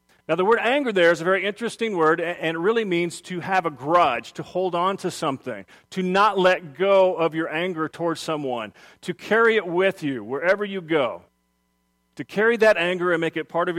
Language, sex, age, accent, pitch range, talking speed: English, male, 40-59, American, 155-205 Hz, 215 wpm